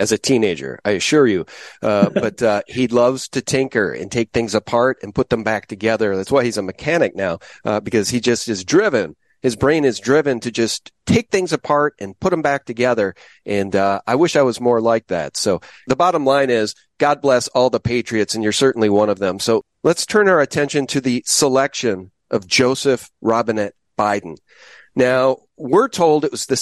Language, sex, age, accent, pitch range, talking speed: English, male, 40-59, American, 120-165 Hz, 205 wpm